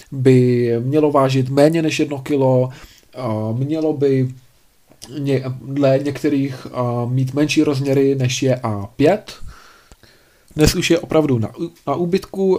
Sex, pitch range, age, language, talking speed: male, 125-165 Hz, 20-39, Czech, 115 wpm